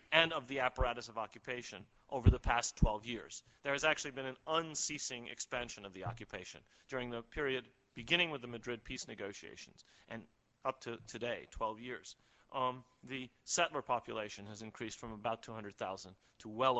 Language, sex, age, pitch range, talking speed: English, male, 30-49, 105-125 Hz, 170 wpm